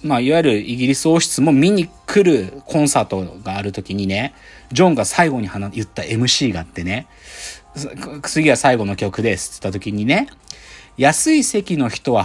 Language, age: Japanese, 40-59